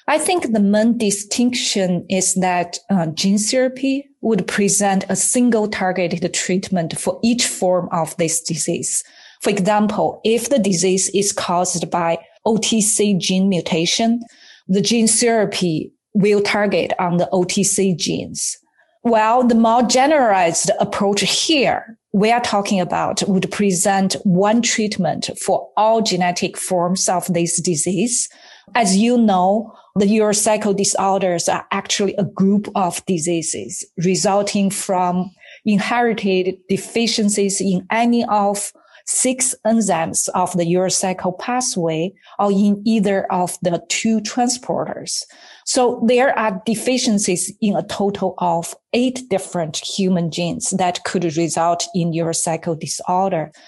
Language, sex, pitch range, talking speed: English, female, 180-225 Hz, 125 wpm